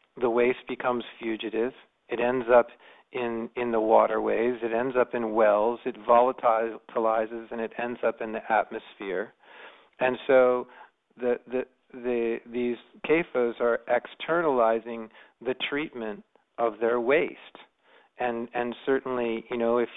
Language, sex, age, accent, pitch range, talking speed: English, male, 40-59, American, 115-125 Hz, 135 wpm